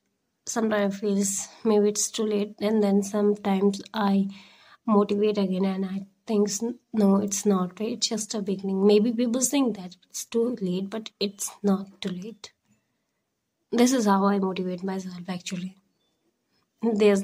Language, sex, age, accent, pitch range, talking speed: English, female, 20-39, Indian, 185-210 Hz, 145 wpm